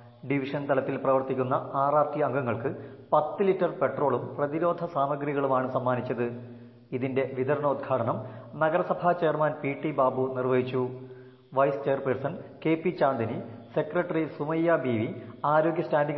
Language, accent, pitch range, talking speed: Malayalam, native, 125-150 Hz, 115 wpm